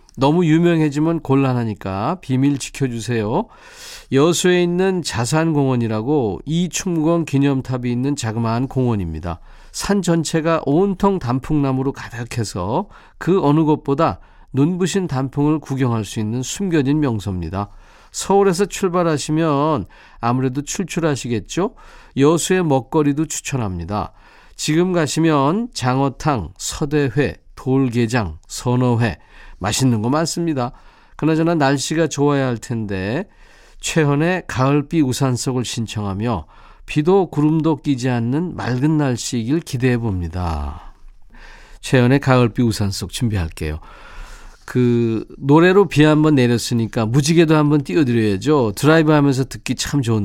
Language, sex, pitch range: Korean, male, 115-155 Hz